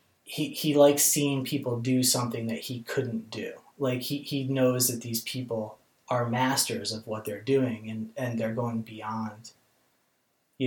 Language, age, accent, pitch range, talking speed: English, 20-39, American, 115-135 Hz, 170 wpm